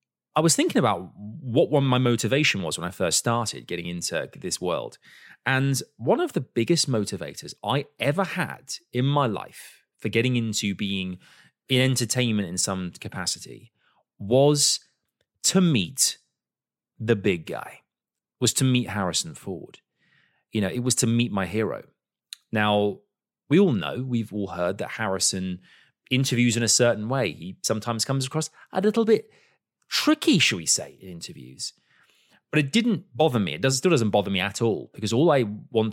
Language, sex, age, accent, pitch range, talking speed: English, male, 30-49, British, 105-150 Hz, 170 wpm